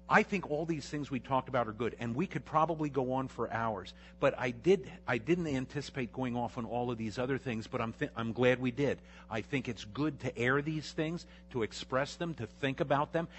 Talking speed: 240 wpm